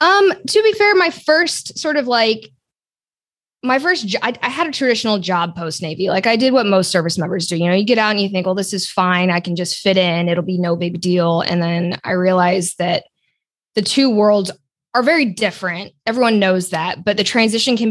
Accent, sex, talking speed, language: American, female, 230 wpm, English